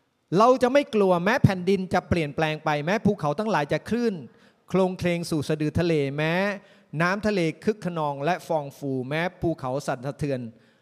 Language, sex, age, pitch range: Thai, male, 30-49, 145-190 Hz